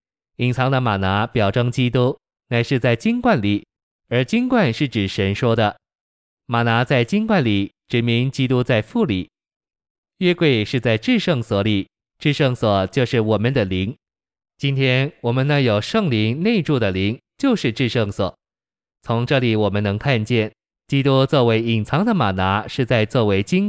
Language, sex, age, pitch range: Chinese, male, 20-39, 105-135 Hz